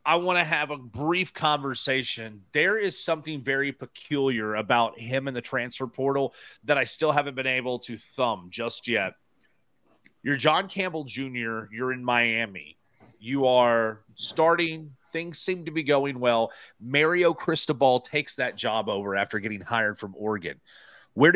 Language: English